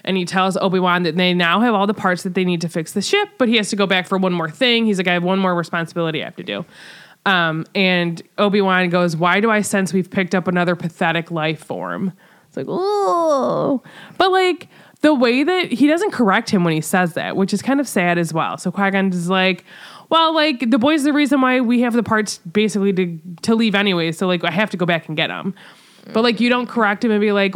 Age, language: 20-39, English